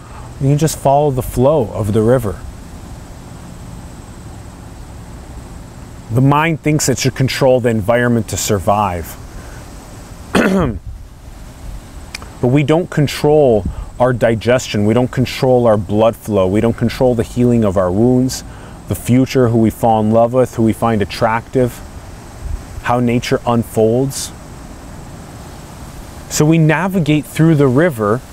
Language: English